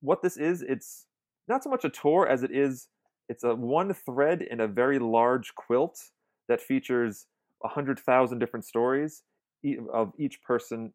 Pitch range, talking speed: 105-135 Hz, 165 wpm